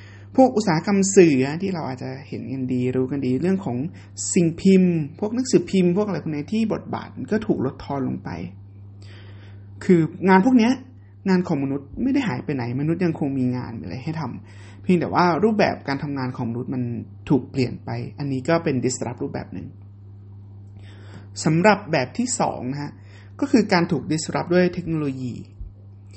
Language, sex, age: English, male, 20-39